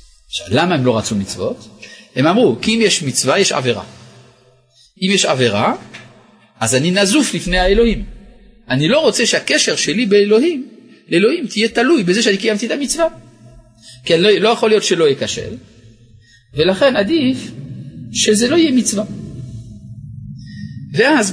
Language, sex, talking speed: Hebrew, male, 140 wpm